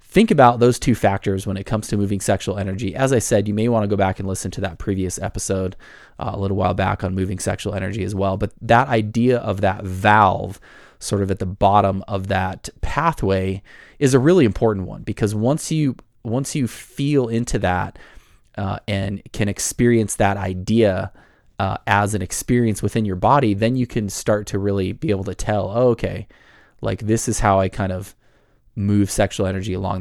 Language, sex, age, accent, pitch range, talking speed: English, male, 20-39, American, 100-115 Hz, 200 wpm